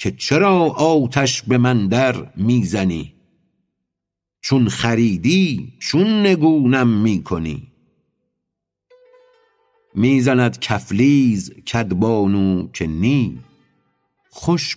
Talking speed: 75 wpm